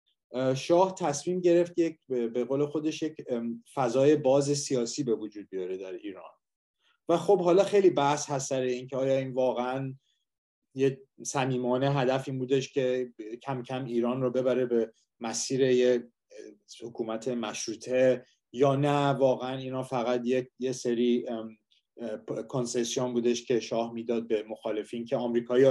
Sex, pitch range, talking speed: male, 115-140 Hz, 140 wpm